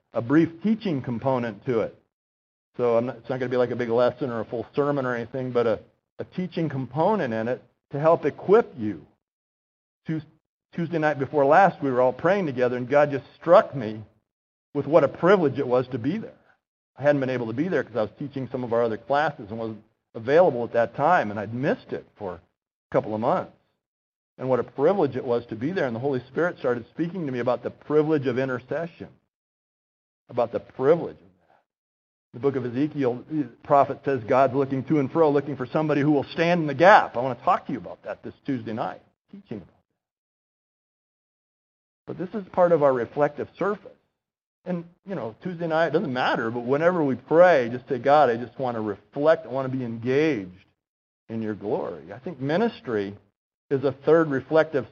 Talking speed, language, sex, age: 210 wpm, English, male, 50-69